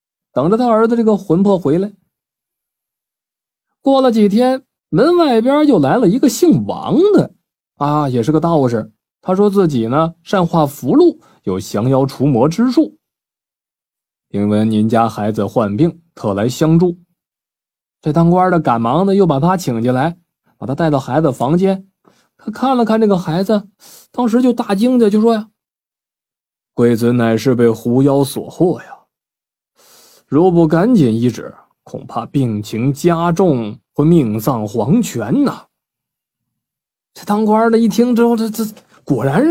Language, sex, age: Chinese, male, 20-39